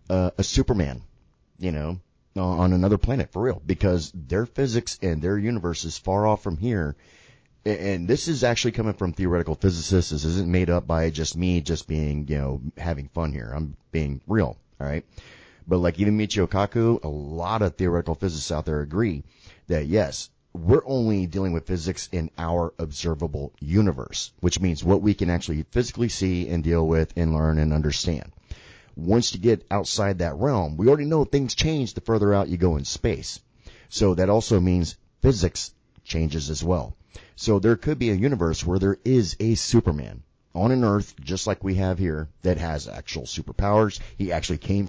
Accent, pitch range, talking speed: American, 80-100 Hz, 185 wpm